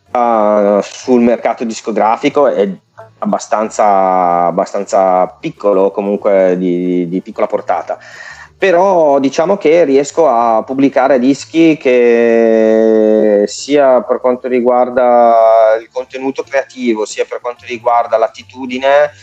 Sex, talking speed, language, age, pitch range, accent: male, 100 wpm, Italian, 30-49, 100-125 Hz, native